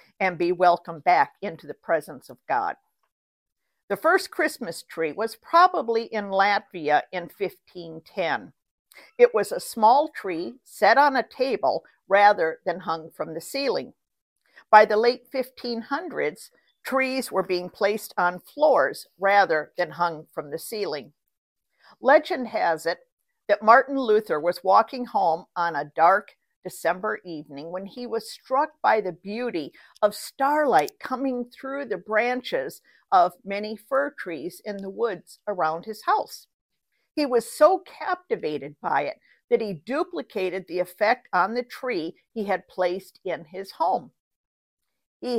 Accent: American